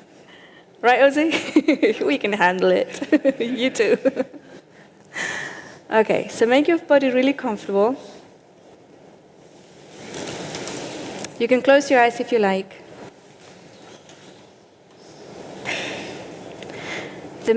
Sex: female